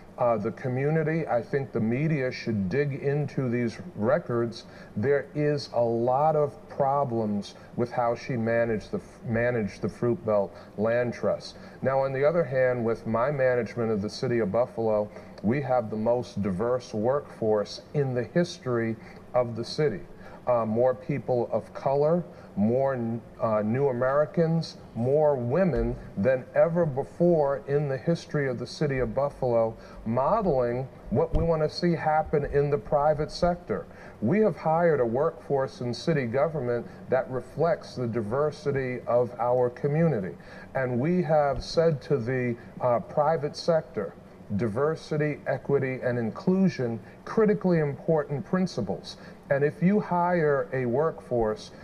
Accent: American